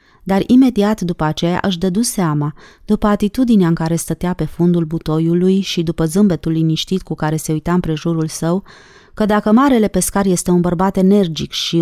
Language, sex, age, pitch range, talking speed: Romanian, female, 30-49, 165-215 Hz, 175 wpm